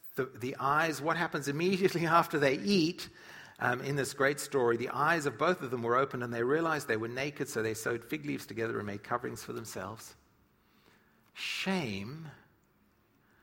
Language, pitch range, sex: English, 115-160 Hz, male